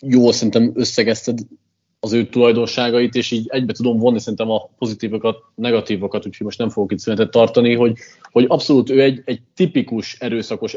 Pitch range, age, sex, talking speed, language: 115-130 Hz, 20-39, male, 160 wpm, Hungarian